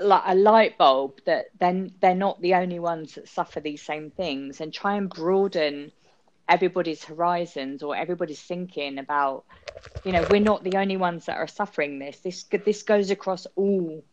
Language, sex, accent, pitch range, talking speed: English, female, British, 160-200 Hz, 180 wpm